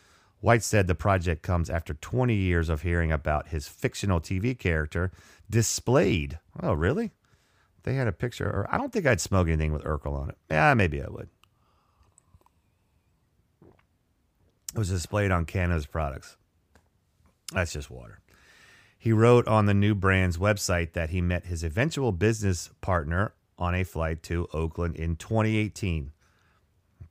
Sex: male